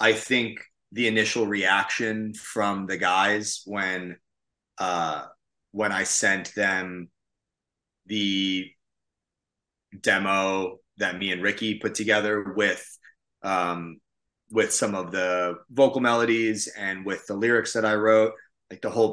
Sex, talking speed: male, 125 wpm